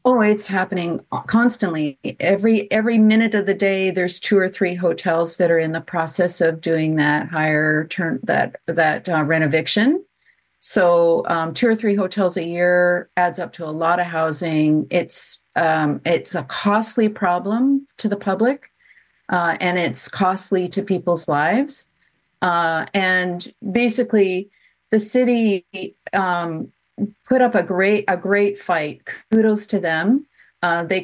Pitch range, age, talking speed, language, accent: 170-215 Hz, 40-59, 155 wpm, English, American